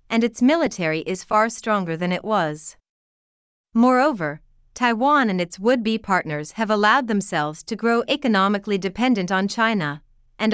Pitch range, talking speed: 175-230 Hz, 140 wpm